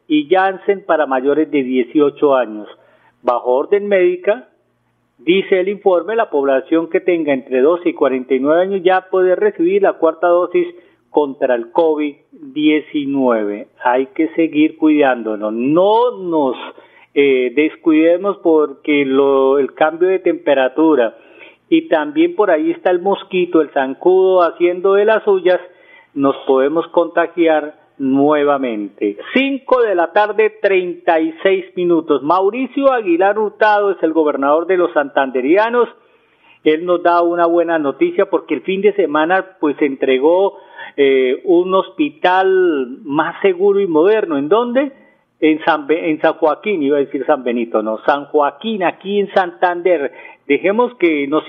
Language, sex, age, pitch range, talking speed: Spanish, male, 40-59, 150-200 Hz, 140 wpm